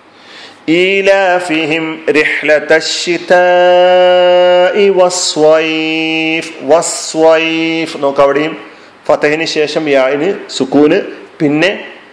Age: 40-59